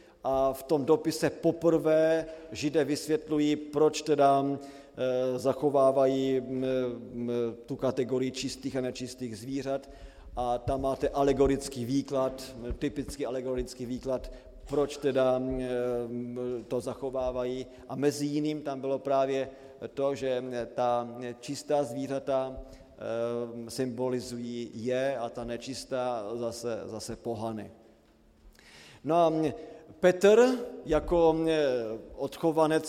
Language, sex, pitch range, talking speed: Slovak, male, 130-150 Hz, 95 wpm